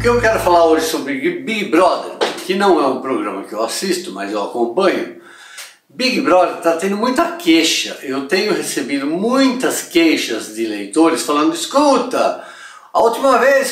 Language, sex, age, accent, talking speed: Portuguese, male, 60-79, Brazilian, 165 wpm